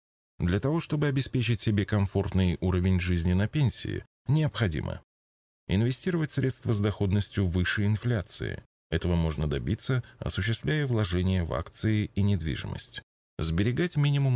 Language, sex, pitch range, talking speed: Russian, male, 90-120 Hz, 115 wpm